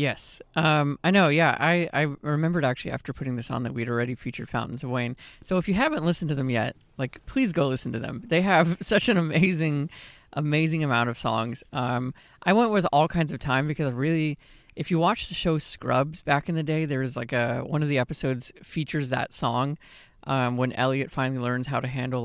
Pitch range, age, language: 125-160 Hz, 20-39, English